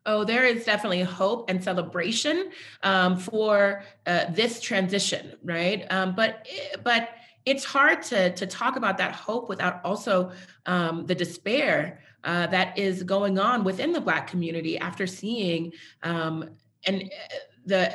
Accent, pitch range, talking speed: American, 175-210 Hz, 145 wpm